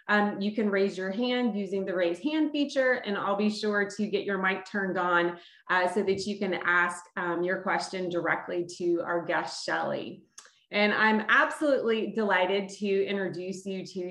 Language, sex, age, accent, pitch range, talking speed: English, female, 20-39, American, 185-220 Hz, 185 wpm